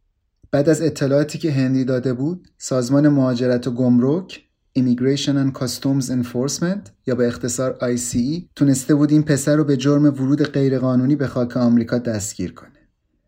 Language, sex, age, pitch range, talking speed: Persian, male, 30-49, 125-155 Hz, 155 wpm